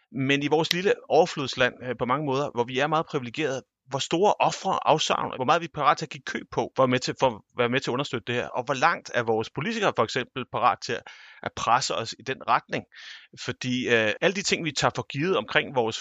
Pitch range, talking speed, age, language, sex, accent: 110-145 Hz, 235 wpm, 30-49, Danish, male, native